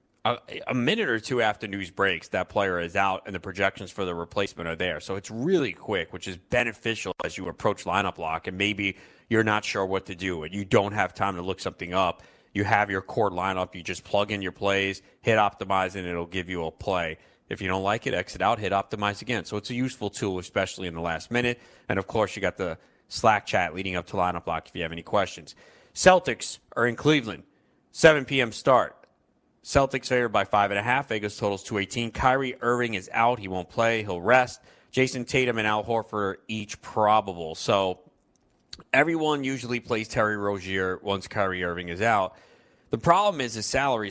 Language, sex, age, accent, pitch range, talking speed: English, male, 30-49, American, 95-120 Hz, 210 wpm